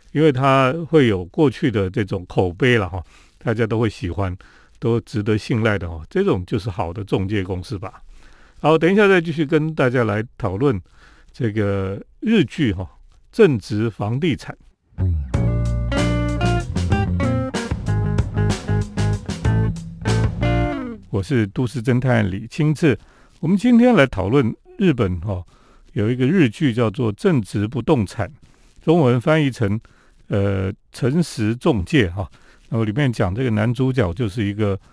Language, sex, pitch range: Chinese, male, 100-135 Hz